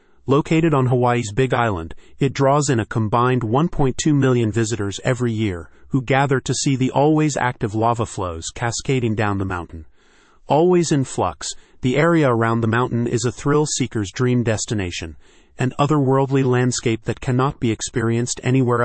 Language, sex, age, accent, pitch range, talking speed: English, male, 40-59, American, 110-135 Hz, 155 wpm